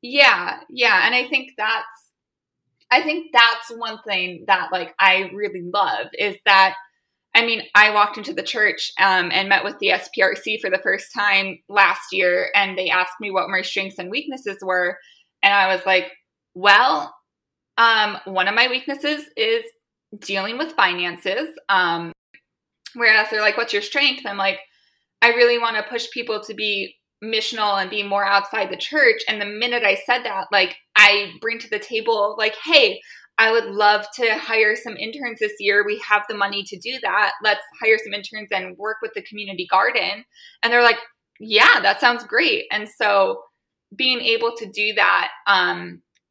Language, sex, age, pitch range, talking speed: English, female, 20-39, 195-235 Hz, 180 wpm